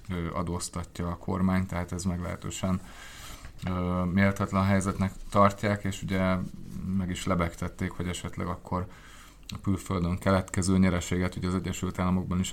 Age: 20-39